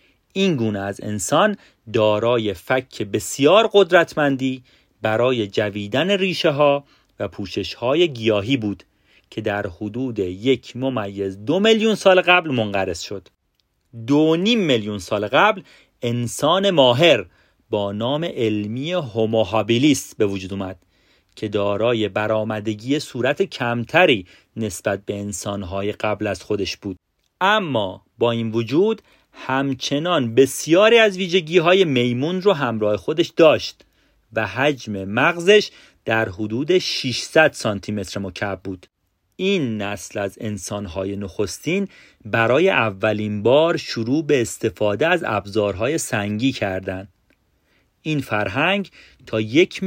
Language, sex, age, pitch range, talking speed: Persian, male, 40-59, 105-150 Hz, 115 wpm